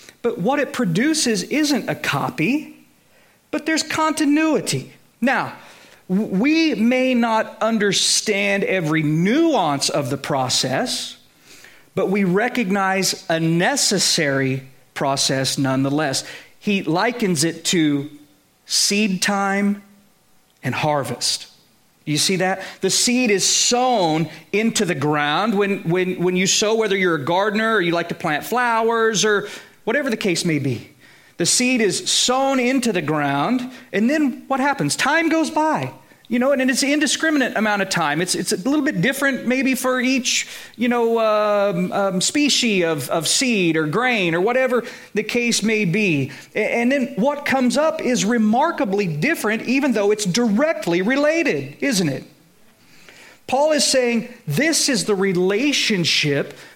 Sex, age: male, 40-59